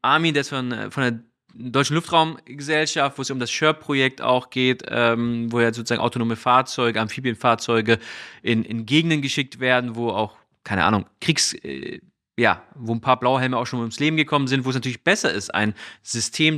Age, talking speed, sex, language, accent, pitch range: 30-49, 180 wpm, male, German, German, 115-140 Hz